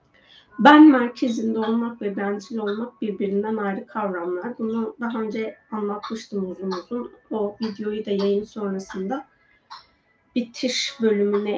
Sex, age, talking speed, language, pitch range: female, 30-49, 115 wpm, Turkish, 200-245 Hz